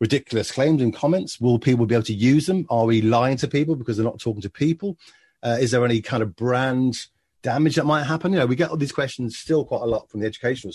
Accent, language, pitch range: British, English, 105-145 Hz